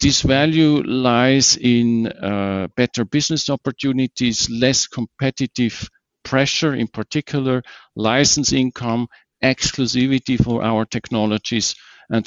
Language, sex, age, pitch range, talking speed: English, male, 50-69, 110-135 Hz, 100 wpm